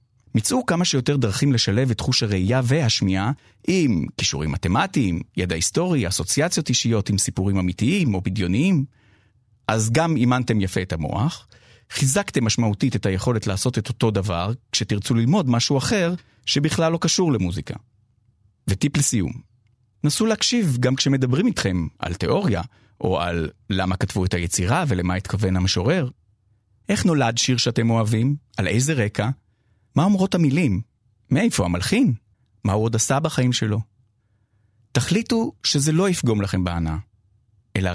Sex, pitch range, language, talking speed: male, 105-135 Hz, Hebrew, 140 wpm